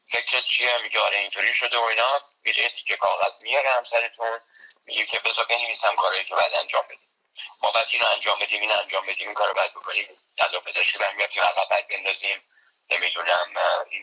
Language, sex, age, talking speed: Persian, male, 50-69, 165 wpm